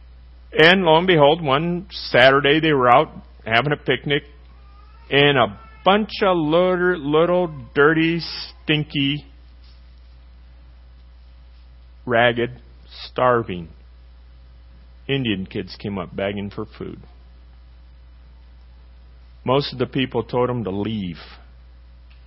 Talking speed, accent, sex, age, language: 100 wpm, American, male, 40-59, English